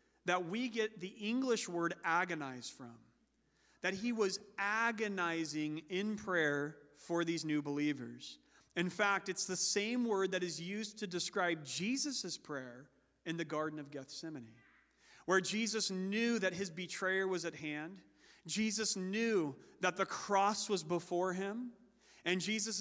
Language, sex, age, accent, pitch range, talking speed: English, male, 40-59, American, 160-200 Hz, 145 wpm